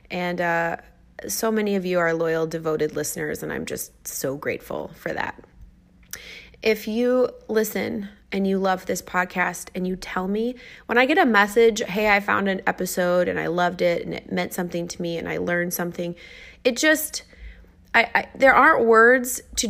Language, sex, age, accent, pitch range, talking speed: English, female, 20-39, American, 175-220 Hz, 185 wpm